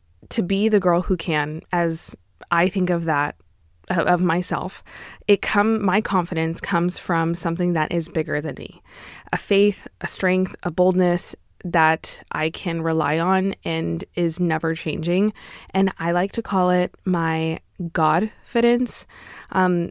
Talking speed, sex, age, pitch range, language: 150 wpm, female, 20-39, 165-190 Hz, English